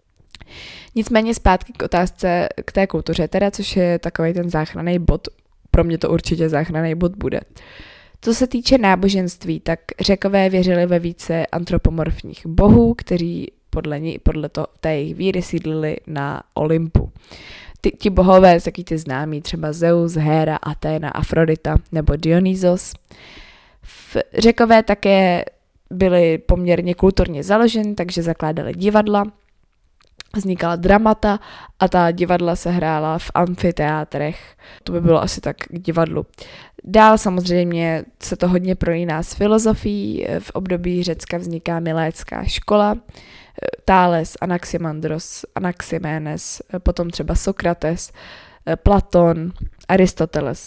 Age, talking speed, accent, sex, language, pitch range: 20-39, 120 wpm, native, female, Czech, 155-185 Hz